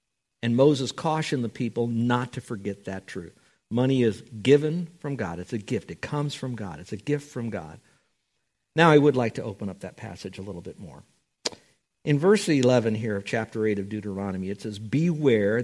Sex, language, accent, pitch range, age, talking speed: male, English, American, 110-160 Hz, 50-69, 200 wpm